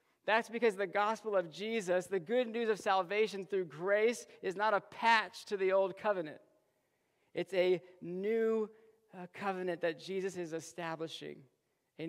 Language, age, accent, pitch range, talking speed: English, 40-59, American, 170-215 Hz, 150 wpm